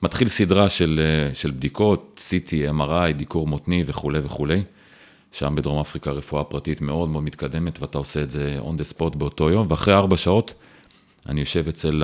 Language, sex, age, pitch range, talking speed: Hebrew, male, 40-59, 75-90 Hz, 170 wpm